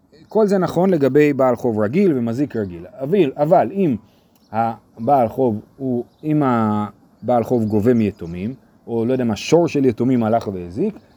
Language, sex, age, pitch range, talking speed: Hebrew, male, 30-49, 110-155 Hz, 145 wpm